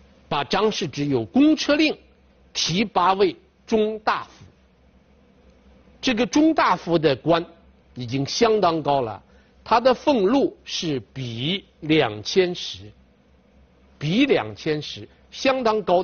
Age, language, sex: 50-69, Chinese, male